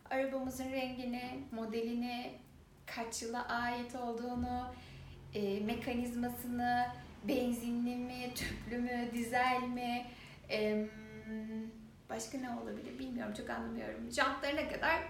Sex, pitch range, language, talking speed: female, 215-310 Hz, Turkish, 85 wpm